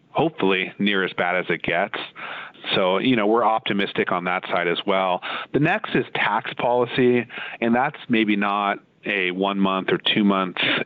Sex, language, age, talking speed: male, English, 30-49, 175 wpm